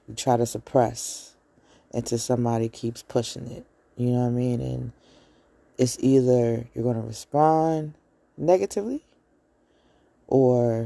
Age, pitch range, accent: 20-39, 115-130 Hz, American